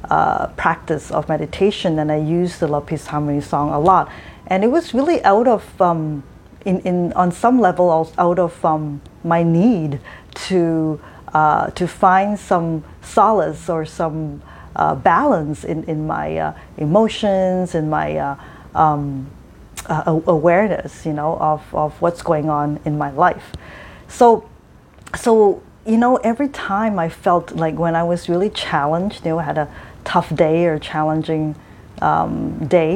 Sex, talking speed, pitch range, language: female, 160 wpm, 155-190 Hz, English